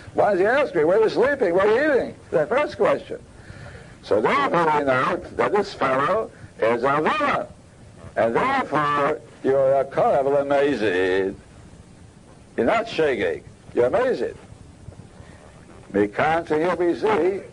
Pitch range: 120-190 Hz